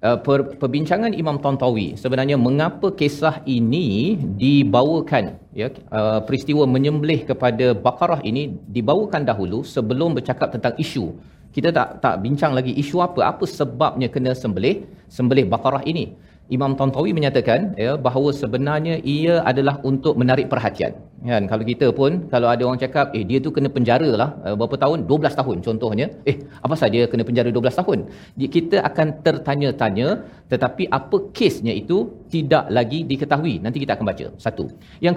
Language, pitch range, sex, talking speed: Malayalam, 125-155 Hz, male, 155 wpm